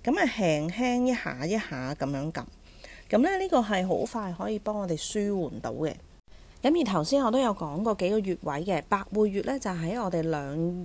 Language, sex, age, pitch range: Chinese, female, 30-49, 155-215 Hz